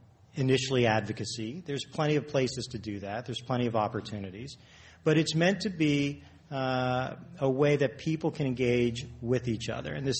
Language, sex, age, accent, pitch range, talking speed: English, male, 40-59, American, 110-135 Hz, 175 wpm